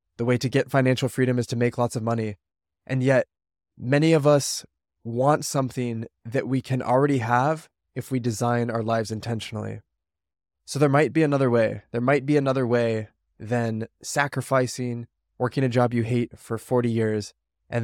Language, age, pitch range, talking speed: English, 20-39, 110-130 Hz, 175 wpm